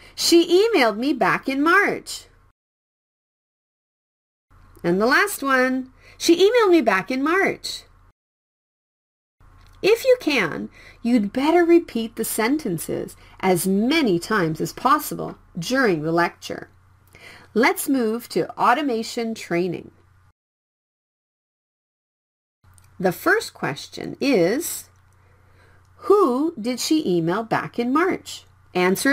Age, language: 40-59, Korean